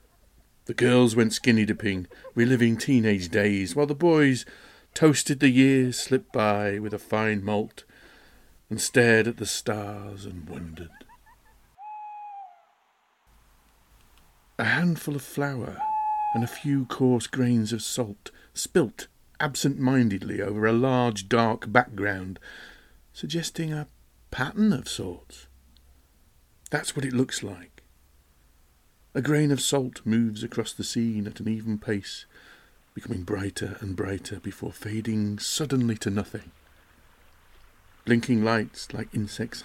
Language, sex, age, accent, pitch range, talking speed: English, male, 50-69, British, 100-130 Hz, 125 wpm